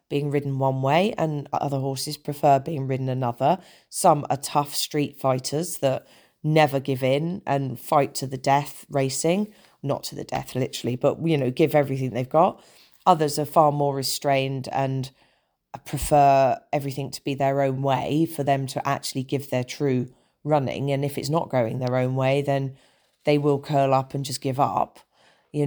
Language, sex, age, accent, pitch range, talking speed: English, female, 40-59, British, 140-165 Hz, 180 wpm